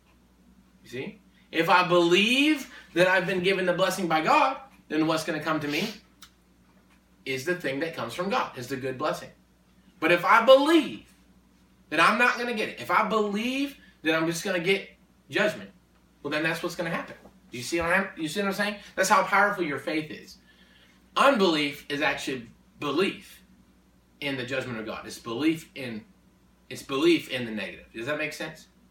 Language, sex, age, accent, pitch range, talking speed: English, male, 30-49, American, 170-270 Hz, 190 wpm